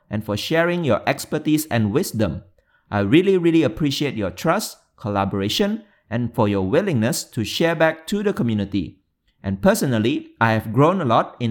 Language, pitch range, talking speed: English, 105-170 Hz, 165 wpm